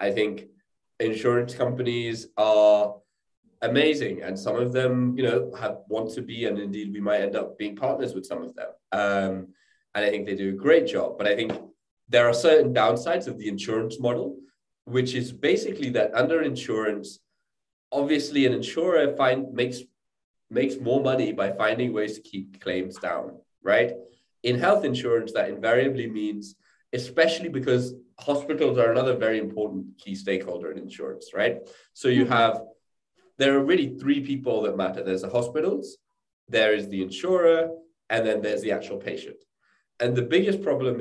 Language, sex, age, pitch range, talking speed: English, male, 20-39, 105-140 Hz, 170 wpm